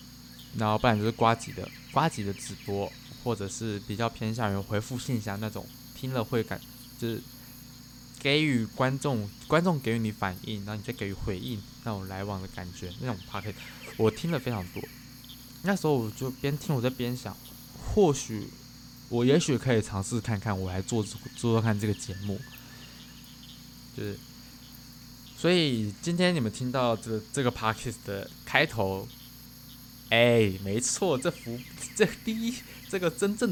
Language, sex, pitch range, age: Chinese, male, 105-125 Hz, 20-39